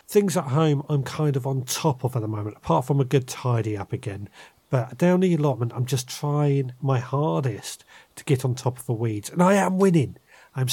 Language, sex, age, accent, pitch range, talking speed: English, male, 40-59, British, 120-150 Hz, 225 wpm